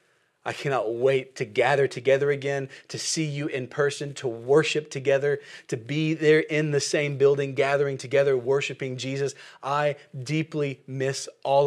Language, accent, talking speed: English, American, 155 wpm